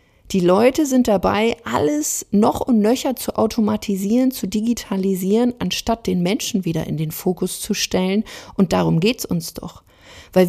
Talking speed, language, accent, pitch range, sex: 160 wpm, German, German, 175-230 Hz, female